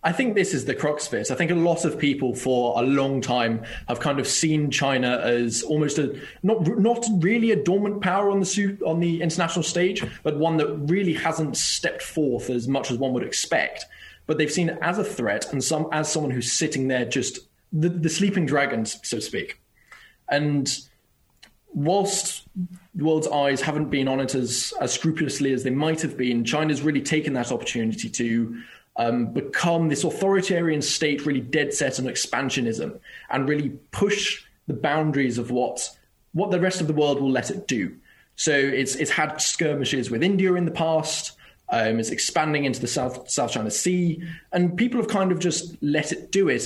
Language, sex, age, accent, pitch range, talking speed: English, male, 20-39, British, 135-170 Hz, 200 wpm